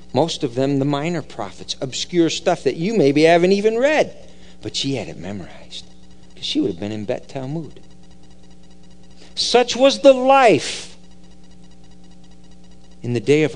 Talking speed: 155 wpm